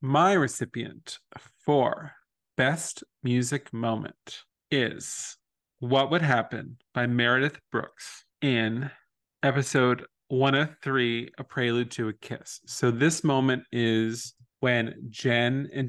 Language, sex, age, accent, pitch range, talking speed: English, male, 30-49, American, 115-135 Hz, 105 wpm